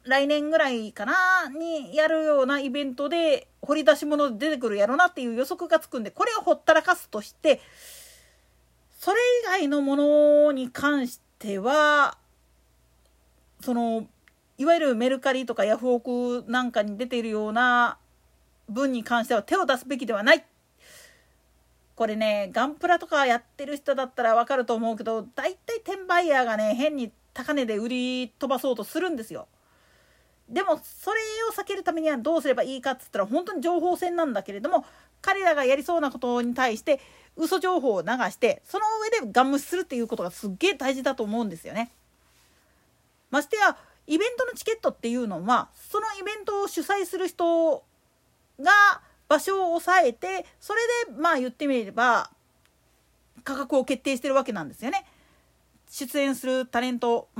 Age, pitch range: 40-59, 245-335 Hz